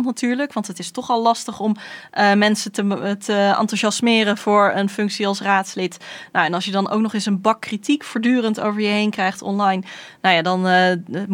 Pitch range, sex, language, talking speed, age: 190-225 Hz, female, Dutch, 205 wpm, 20-39